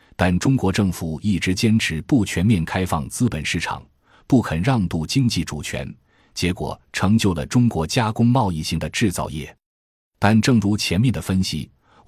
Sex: male